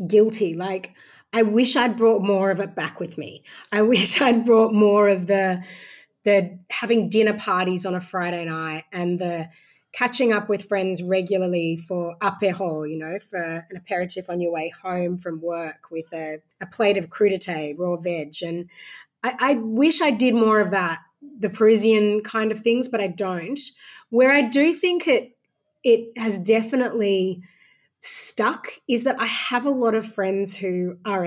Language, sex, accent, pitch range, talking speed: English, female, Australian, 175-220 Hz, 175 wpm